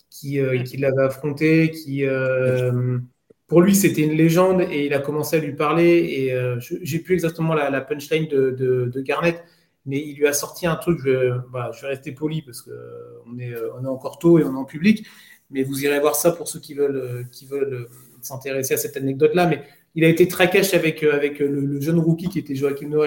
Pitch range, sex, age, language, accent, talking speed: 135-170 Hz, male, 30-49, French, French, 230 wpm